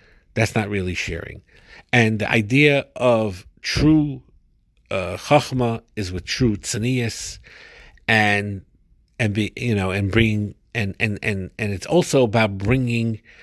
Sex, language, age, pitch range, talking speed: male, English, 50-69, 95-115 Hz, 135 wpm